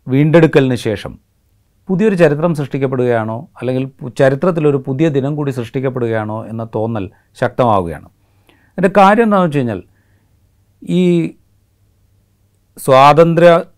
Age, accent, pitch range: 40-59, native, 100-130 Hz